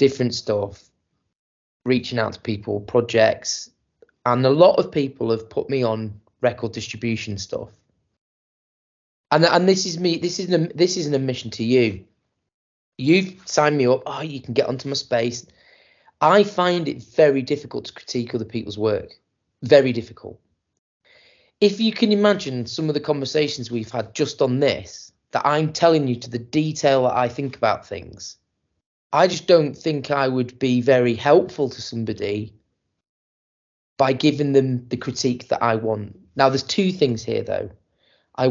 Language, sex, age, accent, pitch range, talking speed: English, male, 20-39, British, 115-150 Hz, 165 wpm